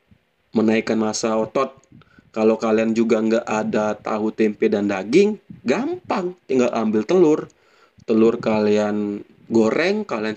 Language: Indonesian